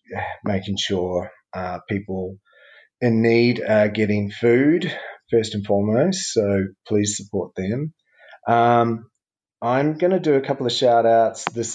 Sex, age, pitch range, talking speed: male, 30-49, 105-135 Hz, 135 wpm